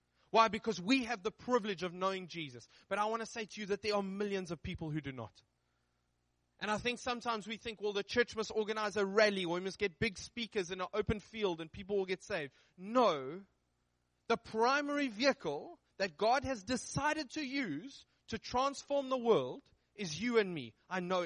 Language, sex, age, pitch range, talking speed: English, male, 20-39, 145-225 Hz, 205 wpm